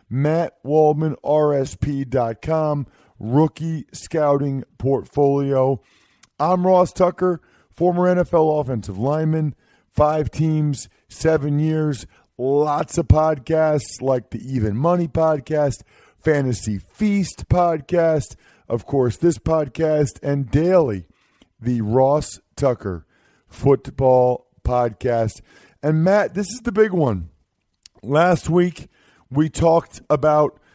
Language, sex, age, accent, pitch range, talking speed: English, male, 40-59, American, 125-170 Hz, 100 wpm